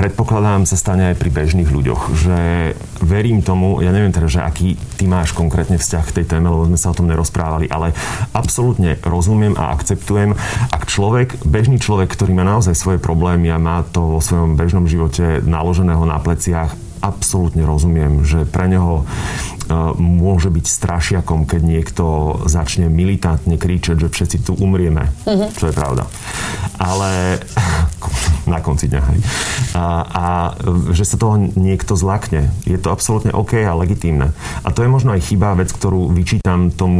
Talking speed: 160 wpm